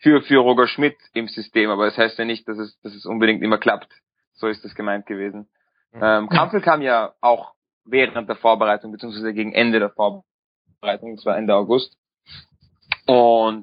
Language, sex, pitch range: German, male, 110-135 Hz